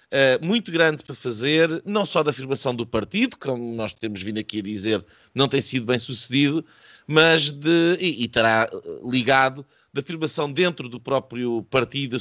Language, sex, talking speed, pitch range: Portuguese, male, 170 wpm, 145-195 Hz